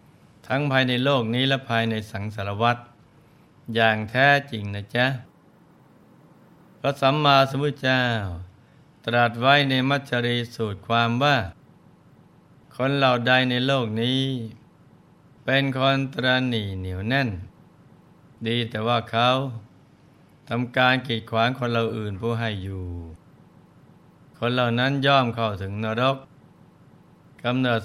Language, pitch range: Thai, 110-135 Hz